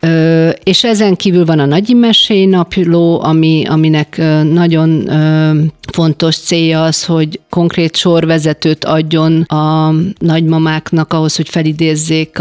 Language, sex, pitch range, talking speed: Hungarian, female, 160-175 Hz, 120 wpm